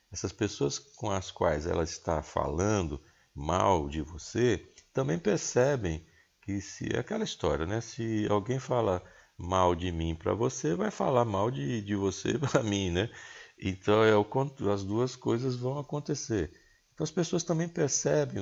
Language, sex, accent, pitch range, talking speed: Portuguese, male, Brazilian, 90-135 Hz, 155 wpm